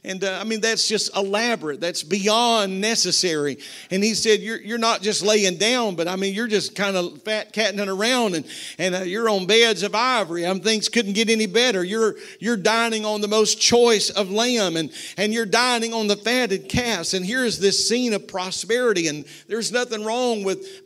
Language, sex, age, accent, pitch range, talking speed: English, male, 50-69, American, 200-240 Hz, 205 wpm